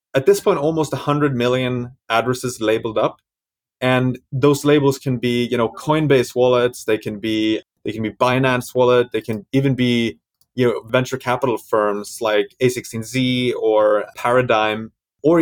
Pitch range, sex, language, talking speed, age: 115-140 Hz, male, English, 150 wpm, 30-49